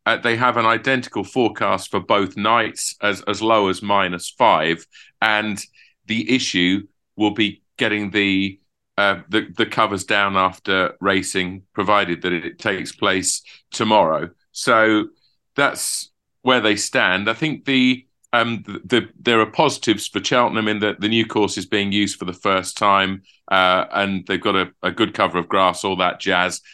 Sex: male